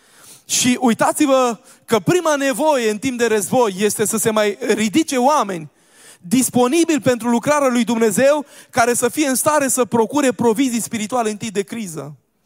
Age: 20-39